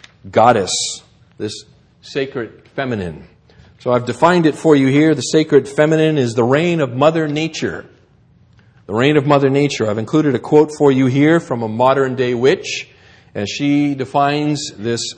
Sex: male